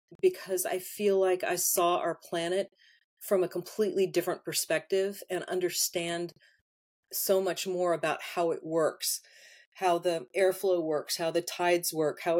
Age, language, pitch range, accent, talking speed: 40-59, English, 165-195 Hz, American, 150 wpm